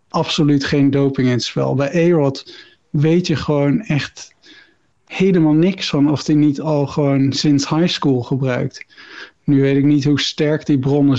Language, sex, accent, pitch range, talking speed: Dutch, male, Dutch, 135-160 Hz, 170 wpm